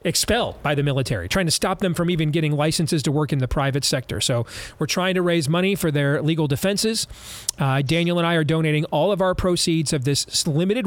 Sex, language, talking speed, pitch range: male, English, 225 wpm, 140-175 Hz